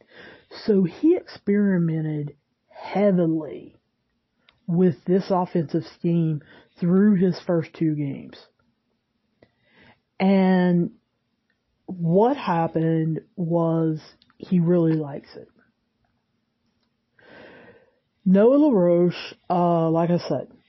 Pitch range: 165-195 Hz